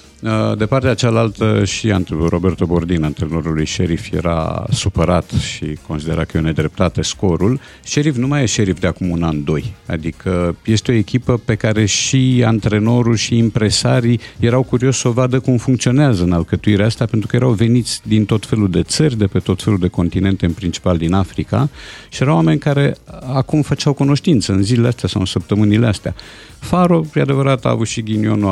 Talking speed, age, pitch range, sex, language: 185 wpm, 50-69, 90-125 Hz, male, Romanian